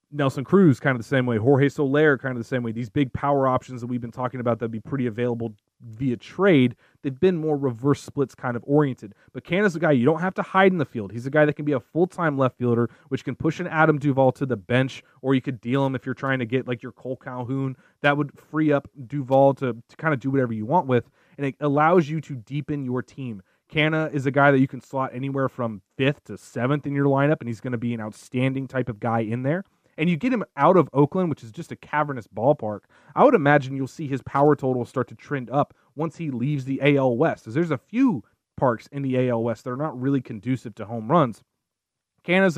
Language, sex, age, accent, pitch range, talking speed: English, male, 30-49, American, 120-150 Hz, 255 wpm